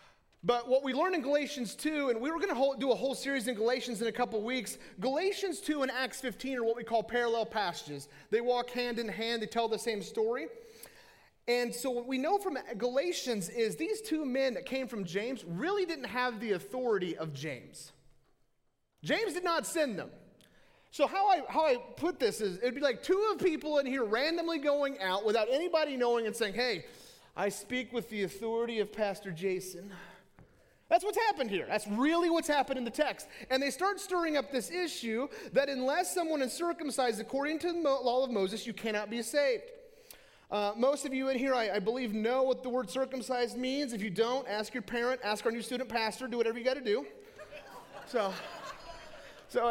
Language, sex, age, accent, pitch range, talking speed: English, male, 30-49, American, 230-305 Hz, 205 wpm